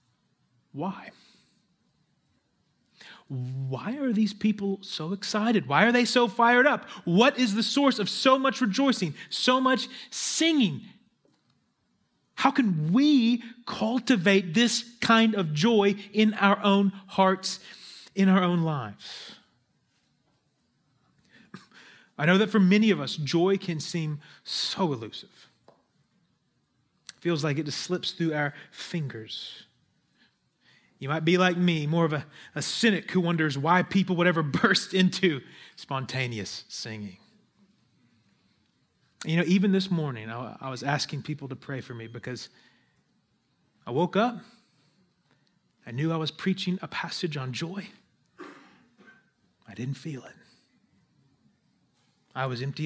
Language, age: English, 30-49